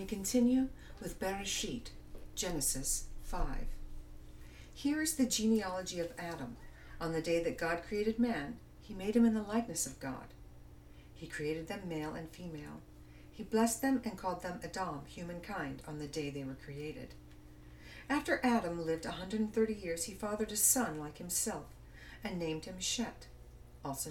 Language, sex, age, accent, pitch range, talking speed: English, female, 60-79, American, 135-225 Hz, 155 wpm